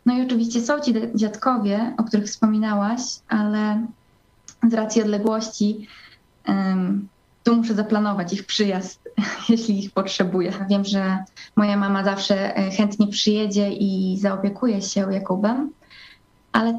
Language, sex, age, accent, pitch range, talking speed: Polish, female, 20-39, native, 200-220 Hz, 120 wpm